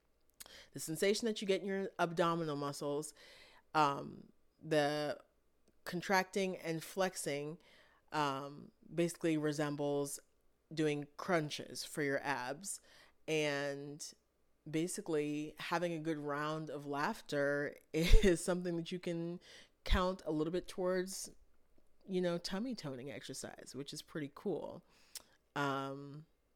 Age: 30-49